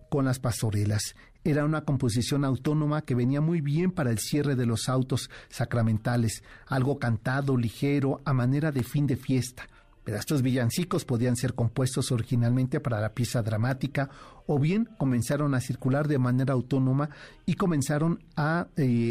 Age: 50-69